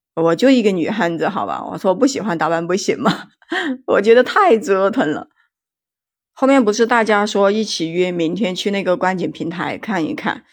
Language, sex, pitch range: Chinese, female, 170-205 Hz